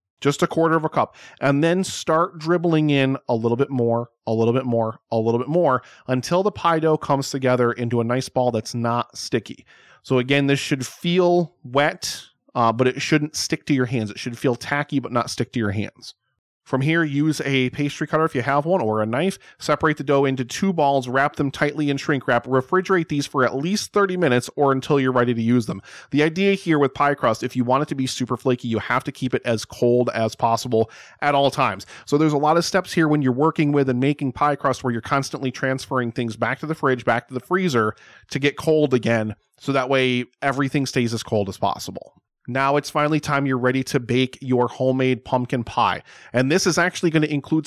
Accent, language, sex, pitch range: American, English, male, 120-150 Hz